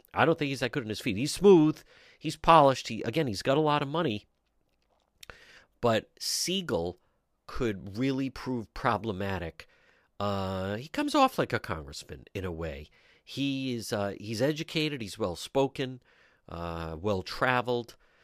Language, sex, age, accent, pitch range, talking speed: English, male, 50-69, American, 100-145 Hz, 150 wpm